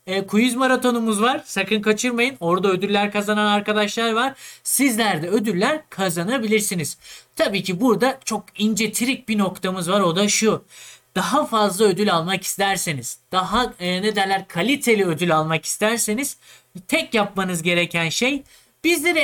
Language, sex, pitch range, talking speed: Turkish, male, 185-250 Hz, 140 wpm